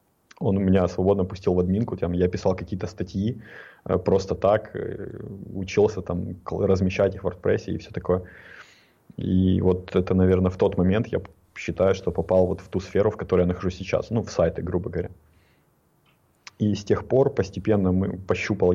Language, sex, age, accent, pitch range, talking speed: Russian, male, 20-39, native, 90-100 Hz, 165 wpm